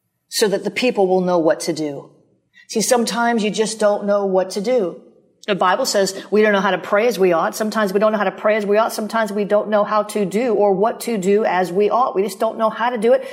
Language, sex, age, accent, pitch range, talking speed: English, female, 40-59, American, 200-235 Hz, 280 wpm